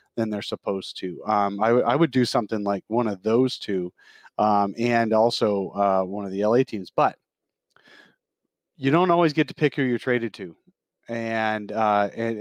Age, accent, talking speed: 30-49, American, 185 wpm